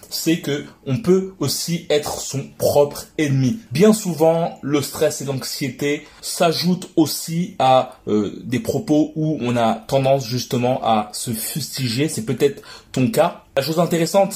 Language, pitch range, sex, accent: French, 125-155 Hz, male, French